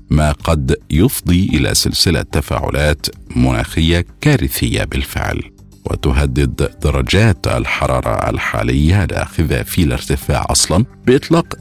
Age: 50-69